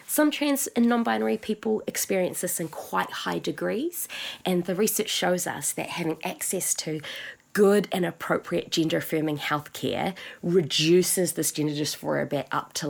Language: English